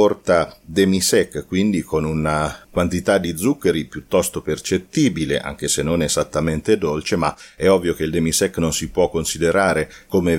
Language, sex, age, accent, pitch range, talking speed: Italian, male, 40-59, native, 80-100 Hz, 155 wpm